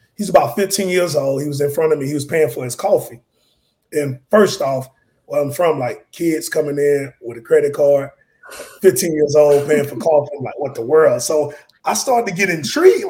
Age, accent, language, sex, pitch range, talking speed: 30-49, American, English, male, 150-225 Hz, 220 wpm